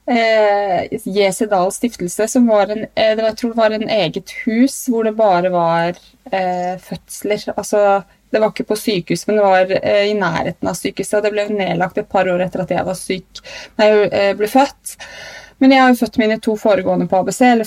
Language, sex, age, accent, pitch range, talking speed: English, female, 20-39, Norwegian, 185-220 Hz, 200 wpm